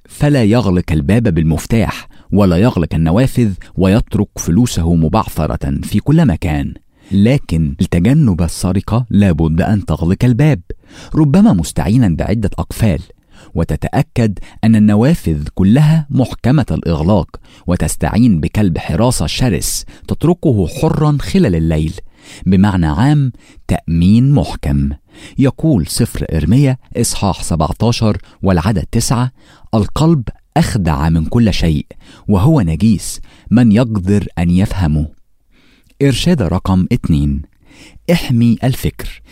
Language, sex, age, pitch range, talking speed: English, male, 50-69, 85-120 Hz, 100 wpm